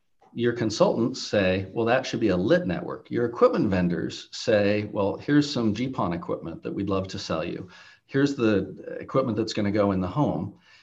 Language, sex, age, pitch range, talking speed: English, male, 40-59, 100-130 Hz, 195 wpm